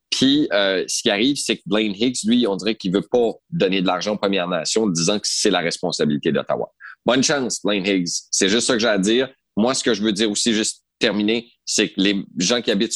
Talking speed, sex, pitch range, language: 255 wpm, male, 90-115 Hz, French